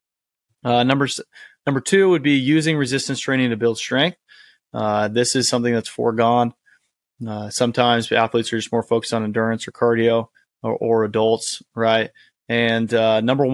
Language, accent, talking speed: English, American, 160 wpm